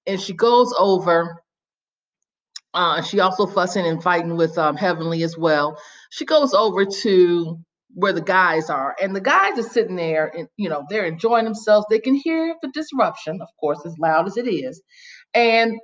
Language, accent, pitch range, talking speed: English, American, 170-245 Hz, 180 wpm